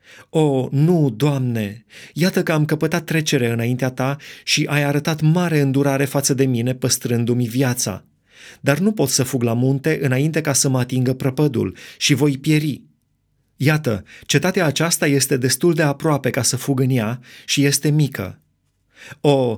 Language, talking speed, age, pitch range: Romanian, 160 wpm, 30-49, 115-145 Hz